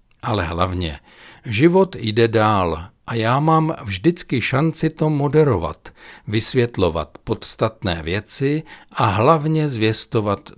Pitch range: 95-135 Hz